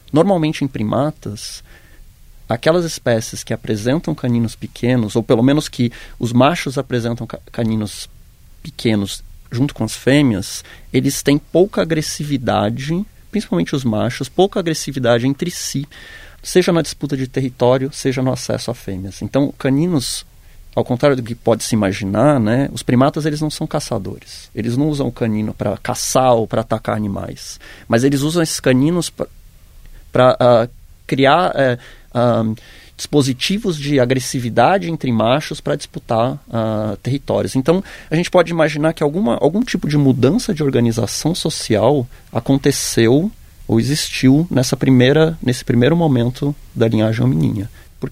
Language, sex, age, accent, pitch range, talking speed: Portuguese, male, 20-39, Brazilian, 115-150 Hz, 135 wpm